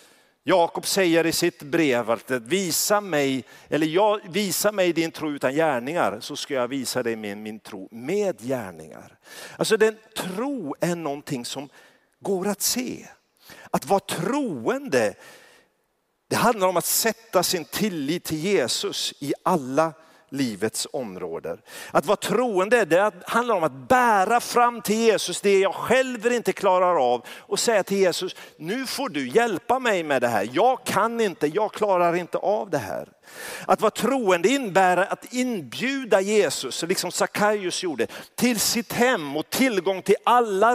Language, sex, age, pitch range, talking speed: Swedish, male, 50-69, 155-235 Hz, 155 wpm